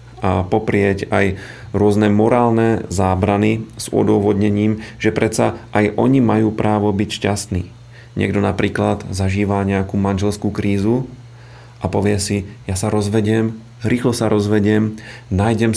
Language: Slovak